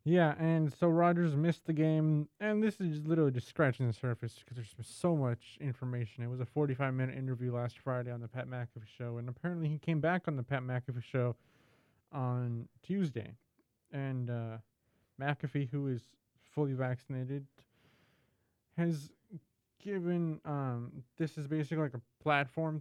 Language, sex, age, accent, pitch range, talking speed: English, male, 20-39, American, 120-150 Hz, 160 wpm